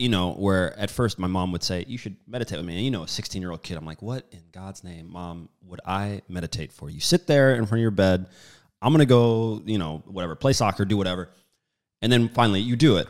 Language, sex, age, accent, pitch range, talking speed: English, male, 30-49, American, 90-110 Hz, 260 wpm